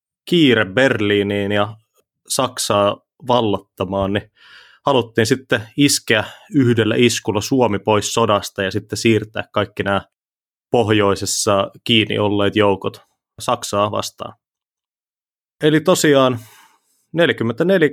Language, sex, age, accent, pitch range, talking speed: Finnish, male, 30-49, native, 100-120 Hz, 95 wpm